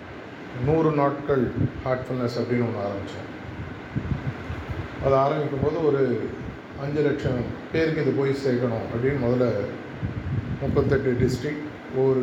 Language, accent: Tamil, native